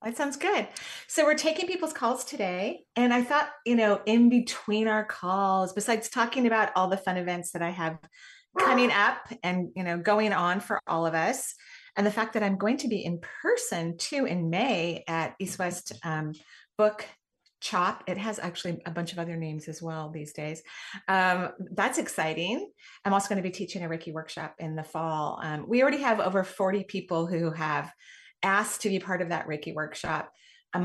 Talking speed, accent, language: 200 wpm, American, English